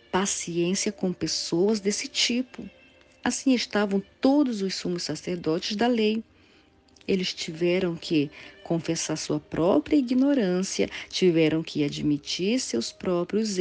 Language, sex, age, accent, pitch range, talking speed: Portuguese, female, 40-59, Brazilian, 175-225 Hz, 110 wpm